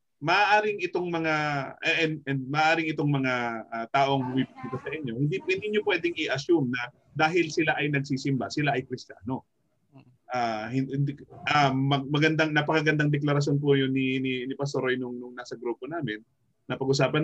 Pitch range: 120-155 Hz